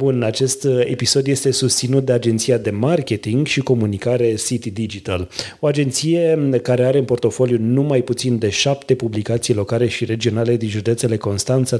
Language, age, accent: Romanian, 30-49, native